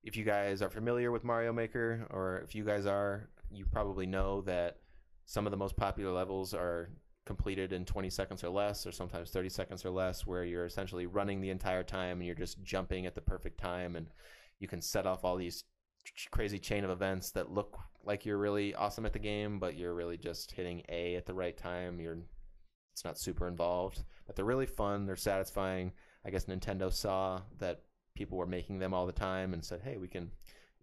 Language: English